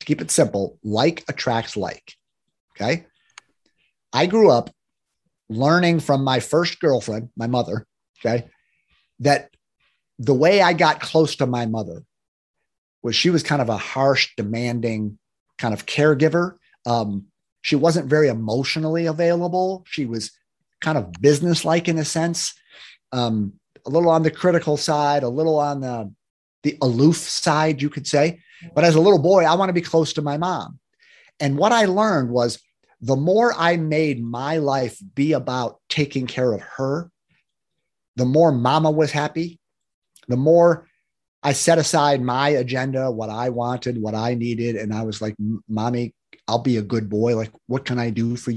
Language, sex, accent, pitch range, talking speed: English, male, American, 115-160 Hz, 165 wpm